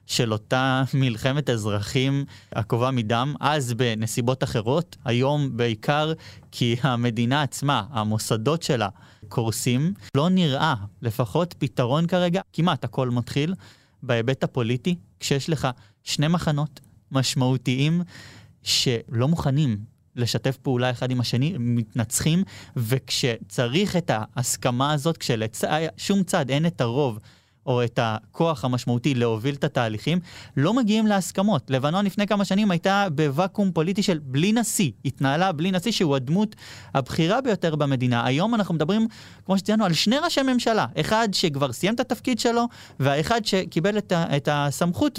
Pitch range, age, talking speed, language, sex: 125-180 Hz, 30-49, 125 wpm, Hebrew, male